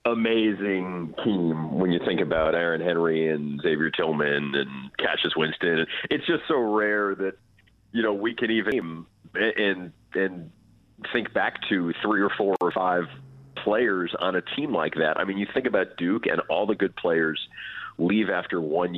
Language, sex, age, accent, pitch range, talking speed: English, male, 40-59, American, 80-100 Hz, 165 wpm